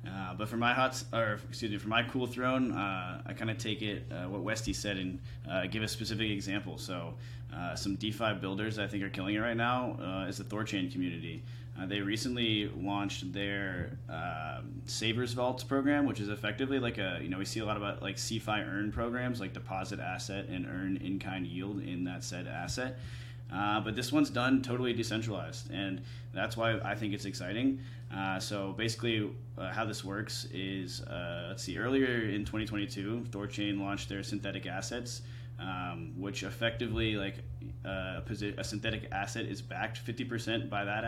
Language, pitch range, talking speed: English, 105-120 Hz, 185 wpm